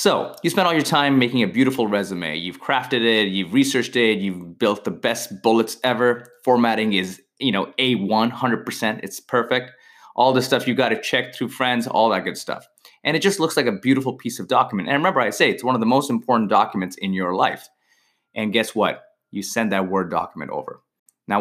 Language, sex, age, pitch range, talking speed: English, male, 20-39, 100-135 Hz, 215 wpm